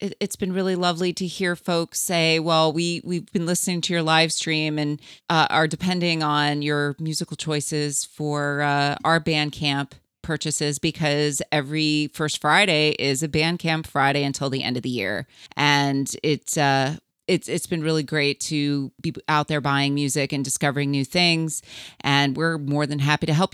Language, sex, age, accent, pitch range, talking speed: English, female, 30-49, American, 145-170 Hz, 180 wpm